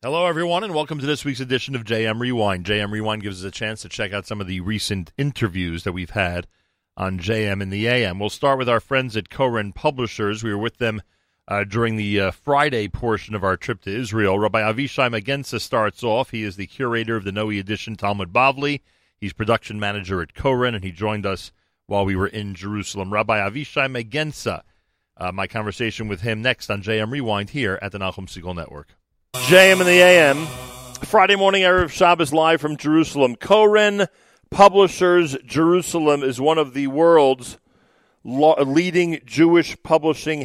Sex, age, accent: male, 40-59, American